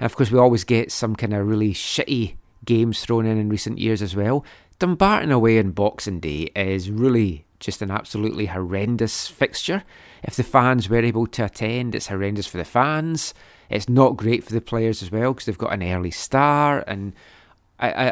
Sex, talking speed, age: male, 195 wpm, 30-49